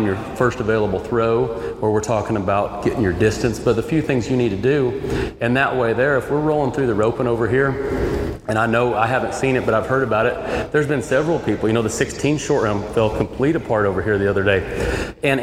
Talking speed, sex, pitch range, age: 240 wpm, male, 110-130 Hz, 30-49